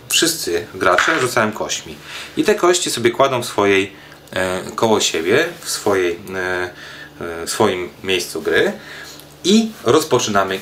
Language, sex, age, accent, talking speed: Polish, male, 30-49, native, 130 wpm